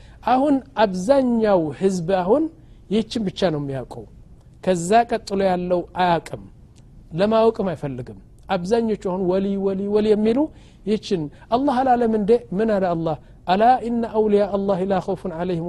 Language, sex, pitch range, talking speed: Amharic, male, 160-220 Hz, 120 wpm